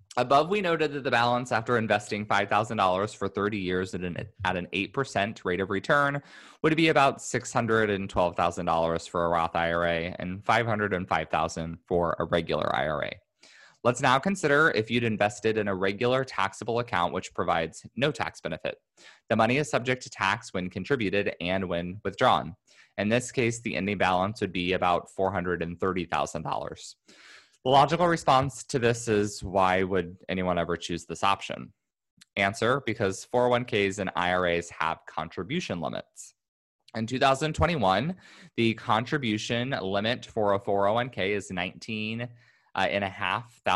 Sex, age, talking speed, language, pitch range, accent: male, 20-39, 145 wpm, English, 95-120 Hz, American